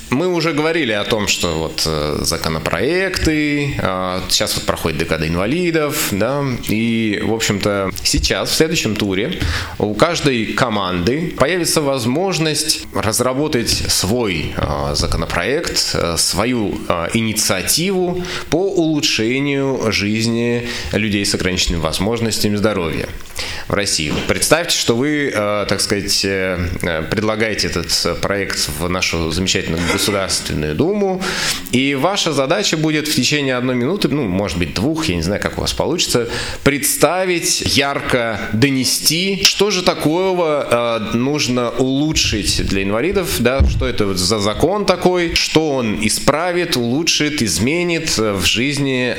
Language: Russian